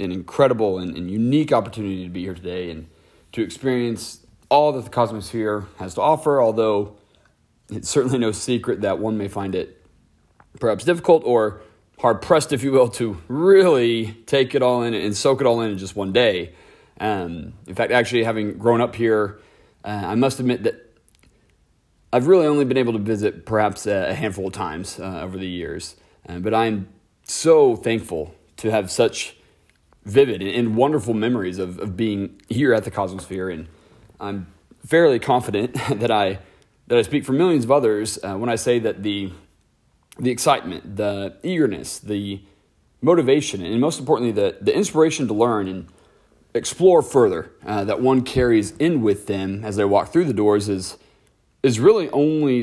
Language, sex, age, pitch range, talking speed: English, male, 30-49, 100-125 Hz, 175 wpm